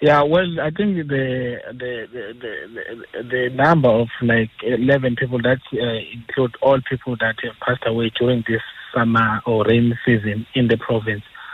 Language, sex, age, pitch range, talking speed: English, male, 30-49, 110-125 Hz, 165 wpm